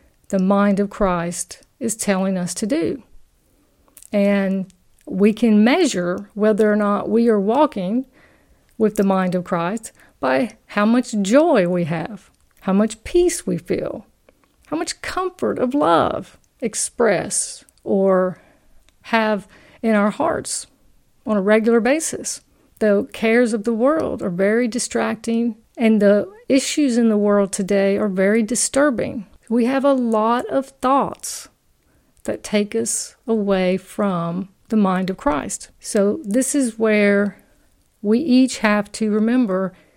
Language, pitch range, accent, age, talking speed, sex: English, 200-240 Hz, American, 50-69, 140 wpm, female